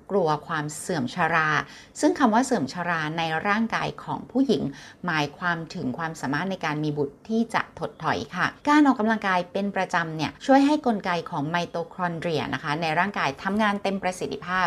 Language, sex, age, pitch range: Thai, female, 30-49, 160-220 Hz